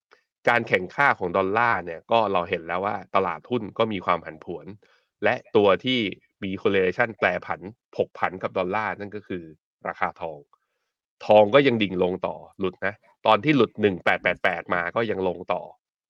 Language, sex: Thai, male